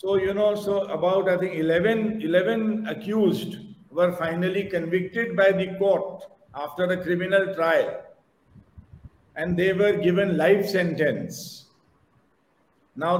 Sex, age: male, 50-69